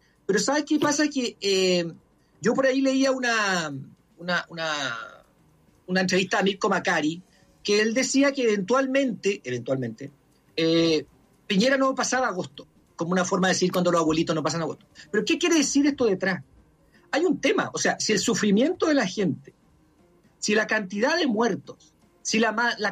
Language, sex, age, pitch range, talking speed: Spanish, male, 50-69, 160-250 Hz, 170 wpm